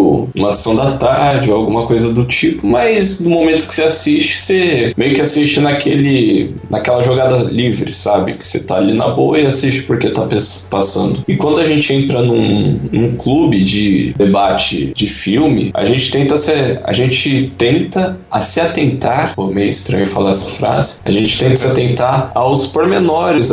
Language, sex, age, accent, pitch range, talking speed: Portuguese, male, 10-29, Brazilian, 105-145 Hz, 180 wpm